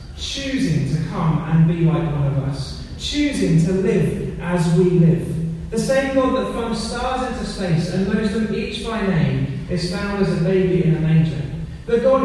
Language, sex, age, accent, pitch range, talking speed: English, male, 30-49, British, 170-215 Hz, 195 wpm